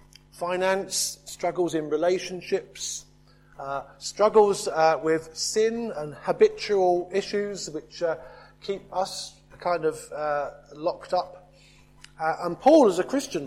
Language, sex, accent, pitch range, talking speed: English, male, British, 150-190 Hz, 120 wpm